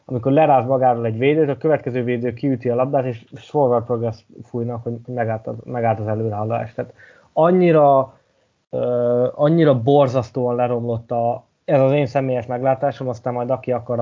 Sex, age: male, 20-39